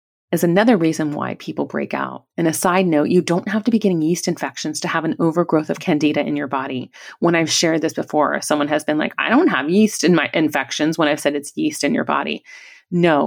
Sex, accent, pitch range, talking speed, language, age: female, American, 150-185 Hz, 240 wpm, English, 30-49